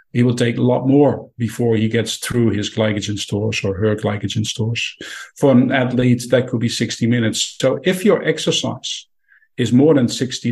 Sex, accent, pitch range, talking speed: male, Dutch, 115-135 Hz, 190 wpm